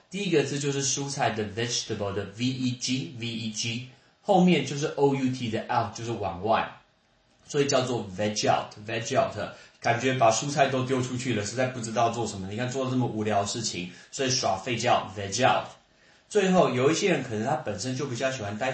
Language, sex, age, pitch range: Chinese, male, 20-39, 110-140 Hz